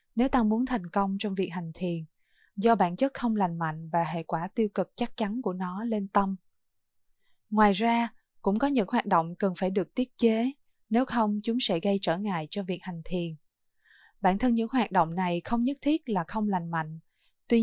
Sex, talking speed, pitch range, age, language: female, 215 wpm, 180-225 Hz, 20-39, Vietnamese